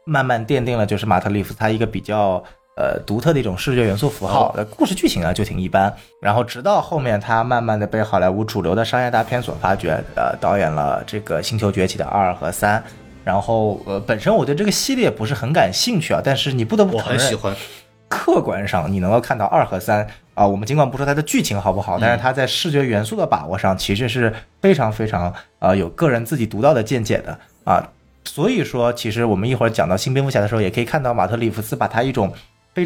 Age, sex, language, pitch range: 20-39, male, Chinese, 105-145 Hz